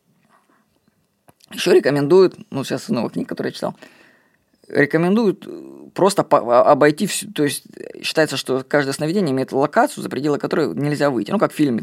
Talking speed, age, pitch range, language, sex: 155 wpm, 20-39, 135-195 Hz, Russian, female